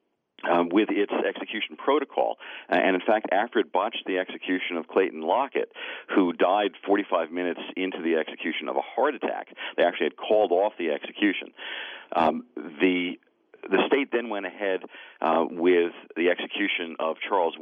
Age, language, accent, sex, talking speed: 40-59, English, American, male, 160 wpm